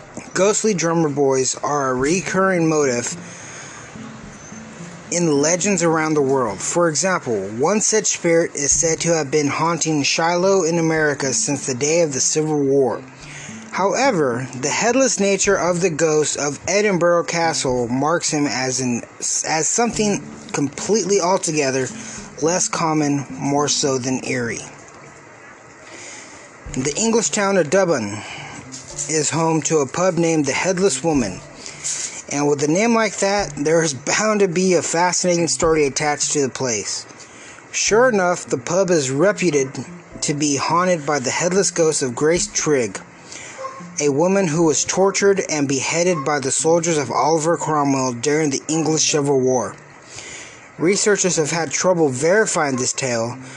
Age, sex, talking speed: 30-49, male, 145 wpm